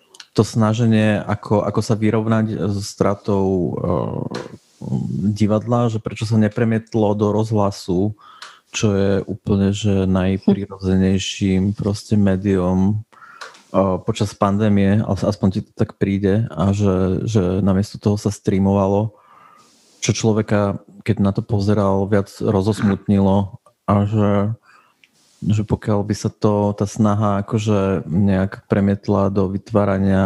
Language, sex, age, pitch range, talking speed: Czech, male, 30-49, 100-110 Hz, 120 wpm